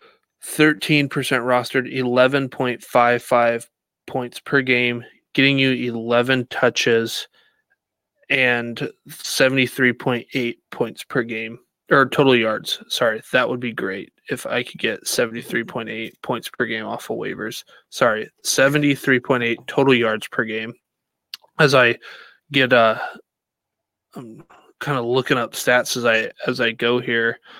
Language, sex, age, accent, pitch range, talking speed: English, male, 20-39, American, 120-140 Hz, 120 wpm